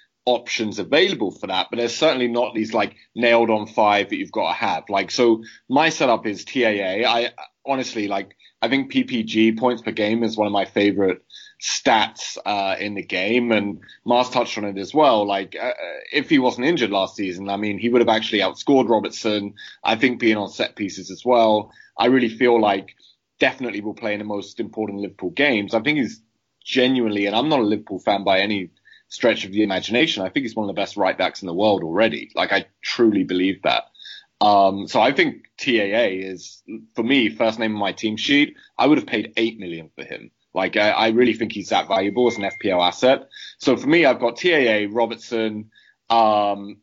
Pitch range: 105-125 Hz